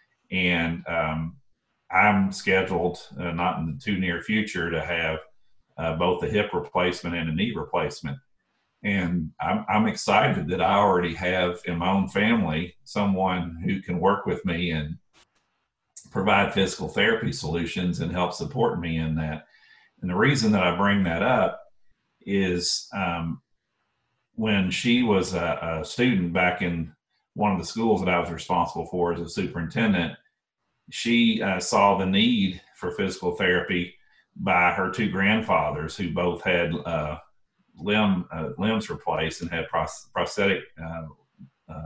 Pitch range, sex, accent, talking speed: 85-95 Hz, male, American, 150 wpm